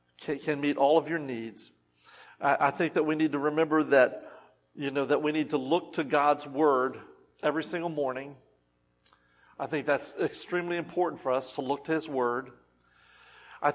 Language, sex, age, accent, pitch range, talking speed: English, male, 50-69, American, 145-205 Hz, 175 wpm